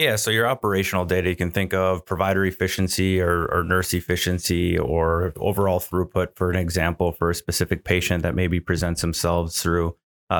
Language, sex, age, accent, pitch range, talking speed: English, male, 30-49, American, 85-95 Hz, 180 wpm